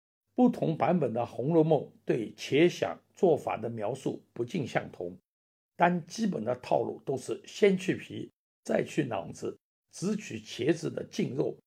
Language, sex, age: Chinese, male, 60-79